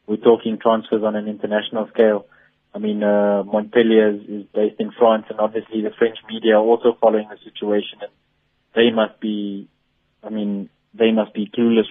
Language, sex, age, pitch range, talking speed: English, male, 20-39, 105-115 Hz, 180 wpm